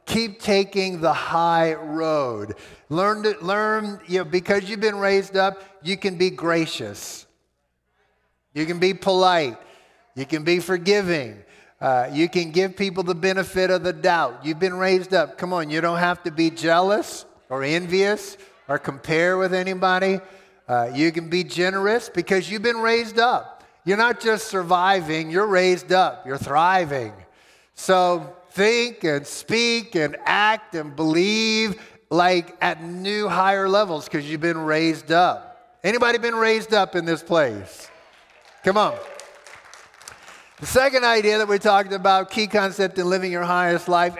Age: 50-69